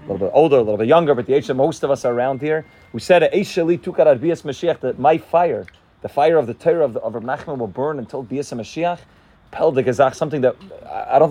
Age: 30-49